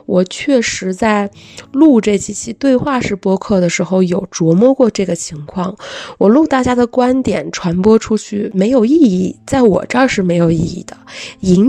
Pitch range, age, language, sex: 185-245 Hz, 20-39, Chinese, female